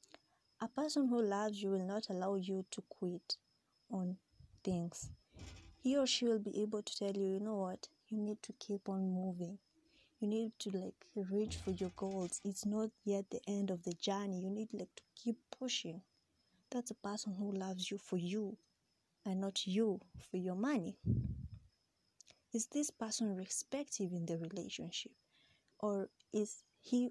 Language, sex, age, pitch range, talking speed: English, female, 20-39, 185-225 Hz, 170 wpm